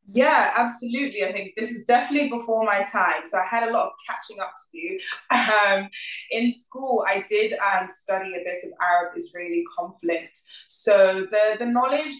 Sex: female